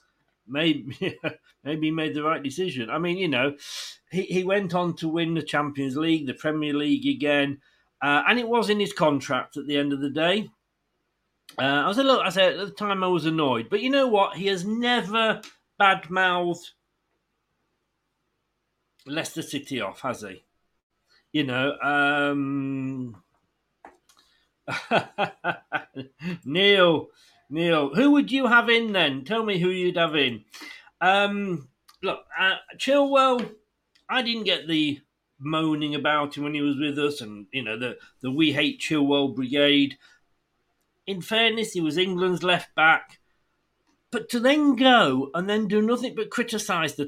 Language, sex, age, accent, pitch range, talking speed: English, male, 40-59, British, 145-205 Hz, 160 wpm